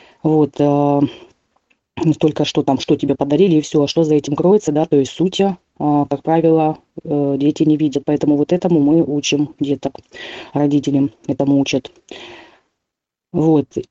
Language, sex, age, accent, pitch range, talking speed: Russian, female, 30-49, native, 150-175 Hz, 140 wpm